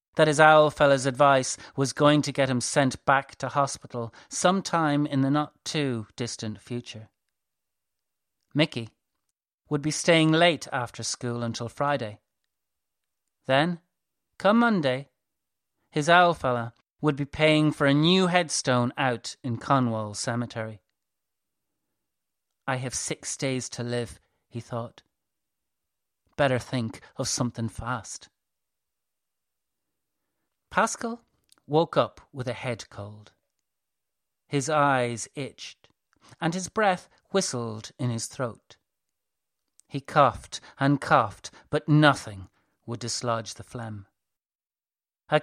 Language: English